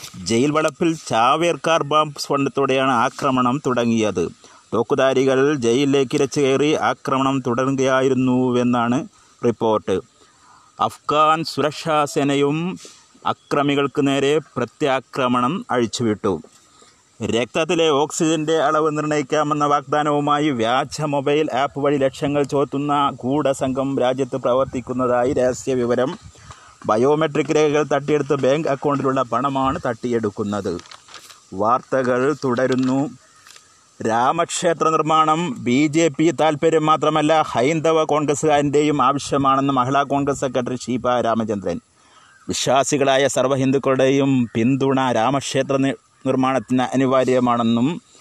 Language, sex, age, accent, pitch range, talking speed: Malayalam, male, 30-49, native, 130-155 Hz, 80 wpm